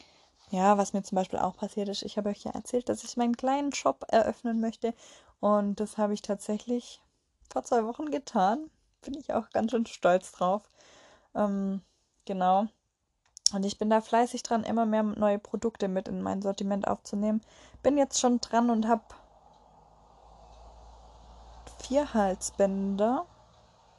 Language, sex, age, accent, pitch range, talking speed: German, female, 20-39, German, 200-235 Hz, 155 wpm